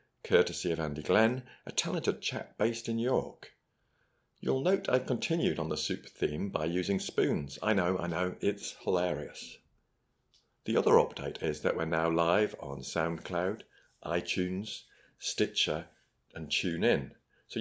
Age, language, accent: 50-69, English, British